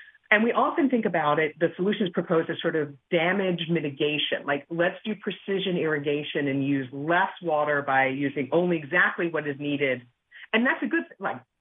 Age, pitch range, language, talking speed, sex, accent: 40-59, 155-240 Hz, English, 180 wpm, female, American